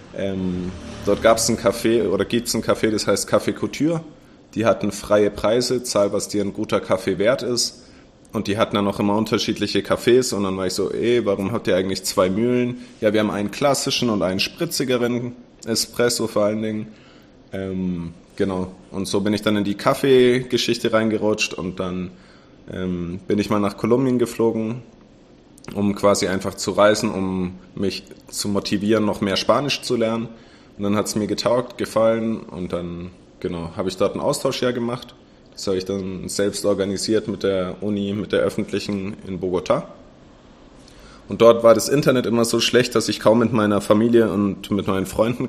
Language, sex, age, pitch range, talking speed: German, male, 30-49, 100-115 Hz, 185 wpm